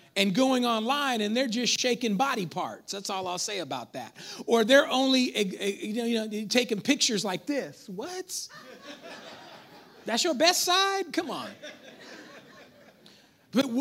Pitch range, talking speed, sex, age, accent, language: 210-295 Hz, 130 wpm, male, 40-59, American, English